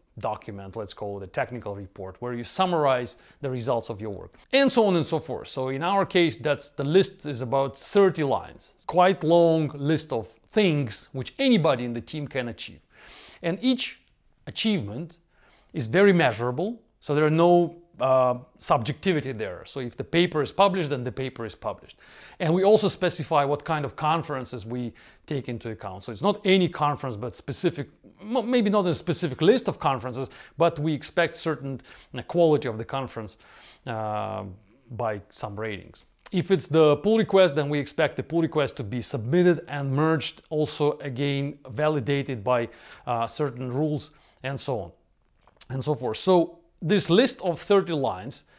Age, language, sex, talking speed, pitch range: 40-59, English, male, 175 wpm, 125-170 Hz